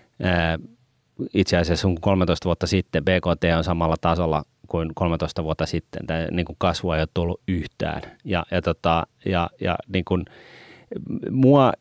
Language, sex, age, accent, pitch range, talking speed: Finnish, male, 30-49, native, 90-125 Hz, 135 wpm